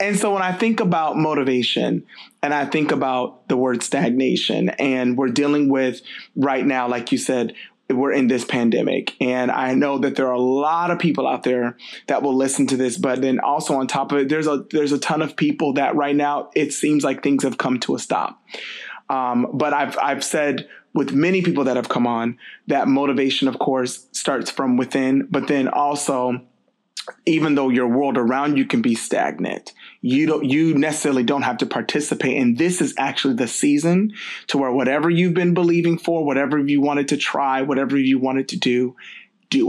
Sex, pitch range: male, 130-170 Hz